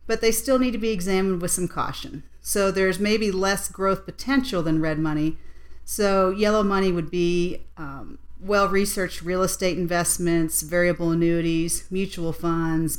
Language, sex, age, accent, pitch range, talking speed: English, female, 40-59, American, 165-195 Hz, 150 wpm